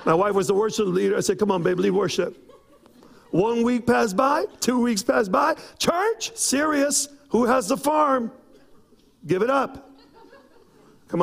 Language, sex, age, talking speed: English, male, 50-69, 165 wpm